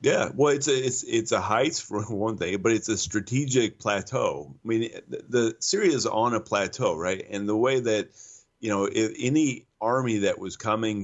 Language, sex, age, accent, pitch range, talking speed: English, male, 30-49, American, 95-120 Hz, 205 wpm